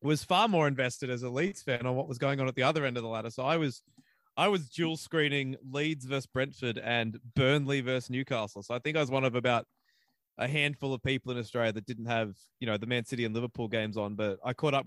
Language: English